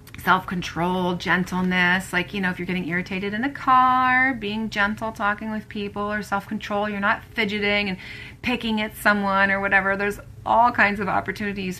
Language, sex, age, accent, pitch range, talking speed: English, female, 30-49, American, 185-240 Hz, 170 wpm